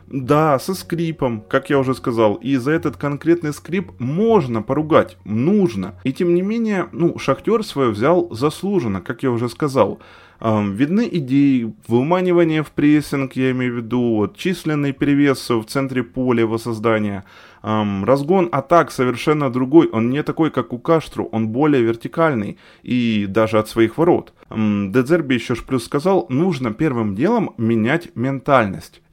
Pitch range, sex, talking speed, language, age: 110-145 Hz, male, 150 wpm, Ukrainian, 20-39